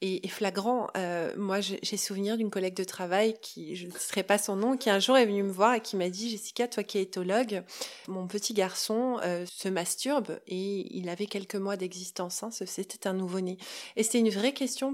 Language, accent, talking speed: French, French, 215 wpm